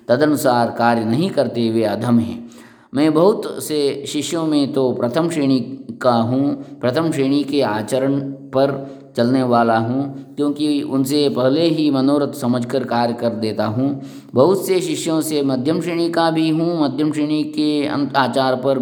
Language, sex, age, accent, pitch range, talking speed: English, male, 20-39, Indian, 120-145 Hz, 155 wpm